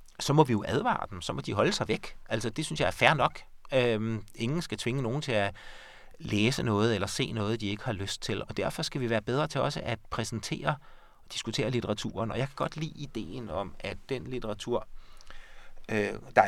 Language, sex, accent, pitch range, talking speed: Danish, male, native, 105-130 Hz, 215 wpm